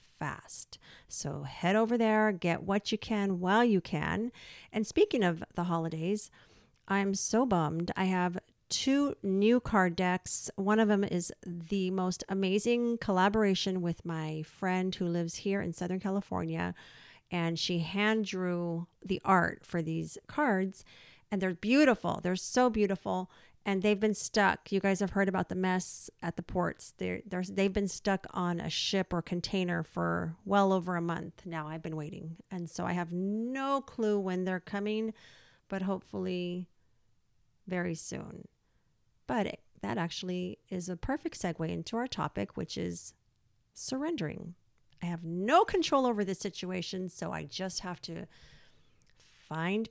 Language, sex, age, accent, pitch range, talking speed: English, female, 40-59, American, 175-205 Hz, 155 wpm